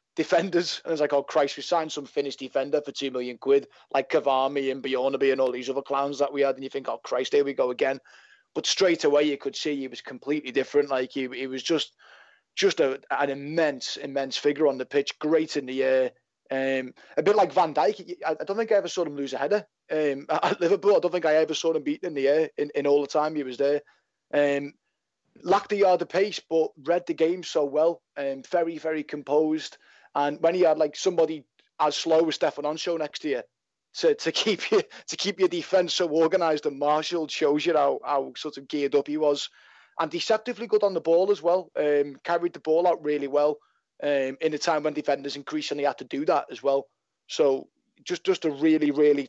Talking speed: 235 wpm